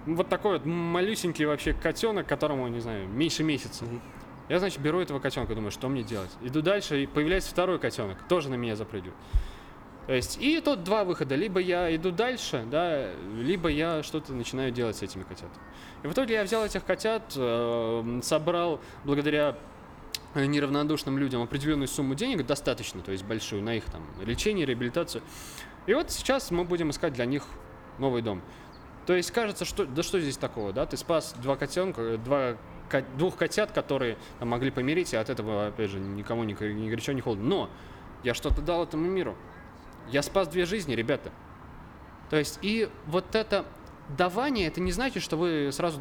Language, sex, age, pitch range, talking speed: English, male, 20-39, 120-175 Hz, 175 wpm